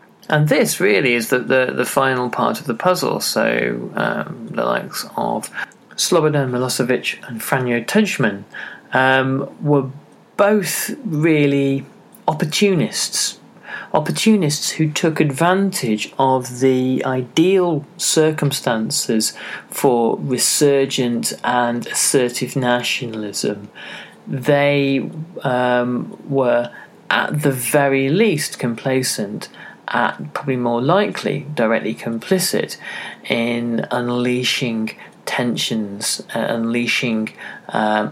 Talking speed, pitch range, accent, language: 95 wpm, 115-145 Hz, British, English